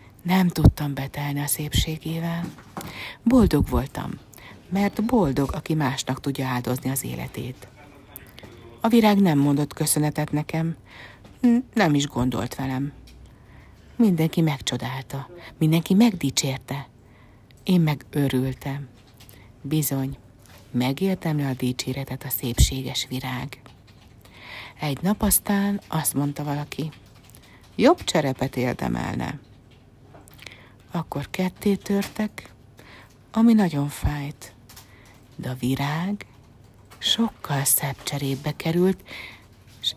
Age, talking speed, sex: 60-79, 95 wpm, female